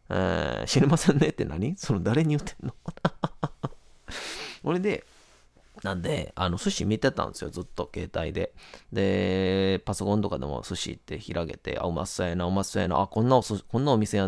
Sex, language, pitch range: male, Japanese, 95-130 Hz